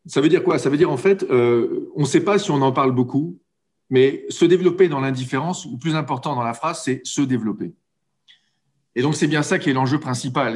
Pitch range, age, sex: 120-160 Hz, 40-59, male